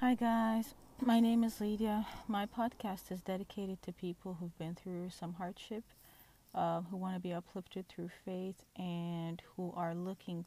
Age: 30-49